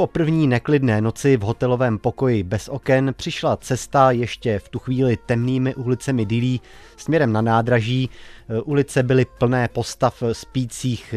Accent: native